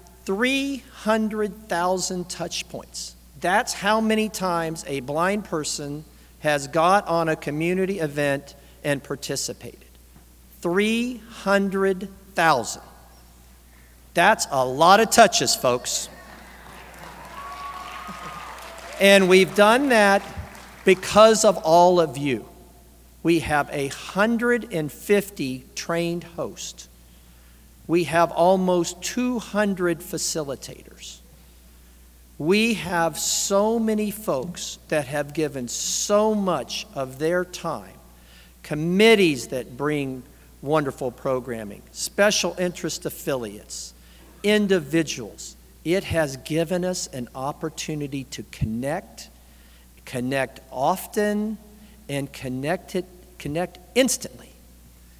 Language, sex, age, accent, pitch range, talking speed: English, male, 50-69, American, 130-195 Hz, 85 wpm